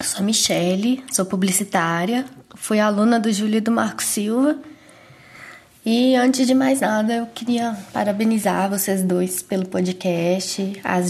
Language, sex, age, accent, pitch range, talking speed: Portuguese, female, 20-39, Brazilian, 195-235 Hz, 145 wpm